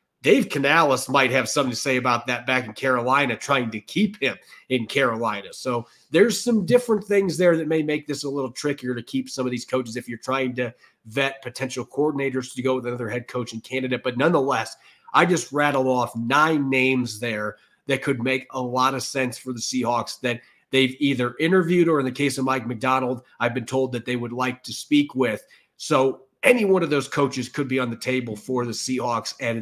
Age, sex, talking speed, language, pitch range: 30-49, male, 215 wpm, English, 120-140 Hz